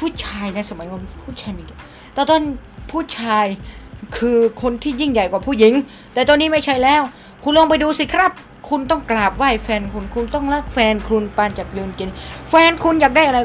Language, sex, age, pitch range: Thai, female, 20-39, 220-295 Hz